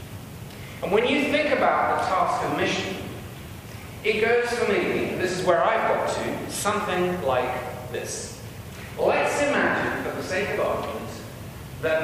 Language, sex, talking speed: English, male, 150 wpm